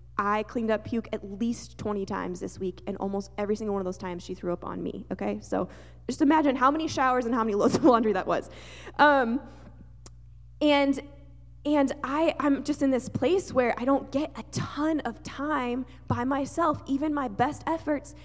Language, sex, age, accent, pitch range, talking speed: English, female, 10-29, American, 210-275 Hz, 200 wpm